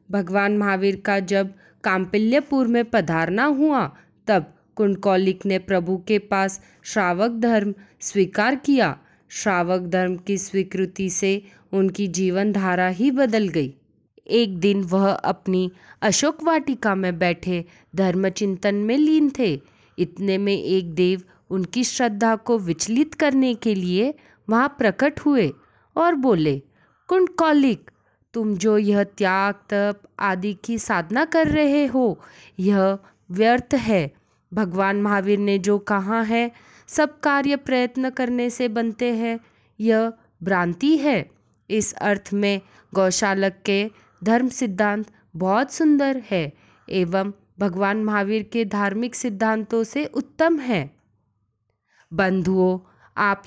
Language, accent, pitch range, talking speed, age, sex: Hindi, native, 190-240 Hz, 120 wpm, 20-39, female